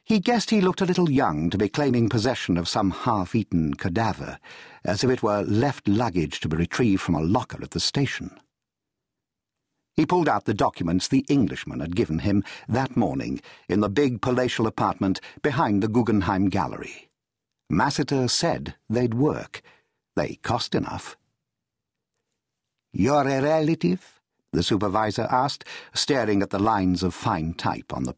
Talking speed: 155 wpm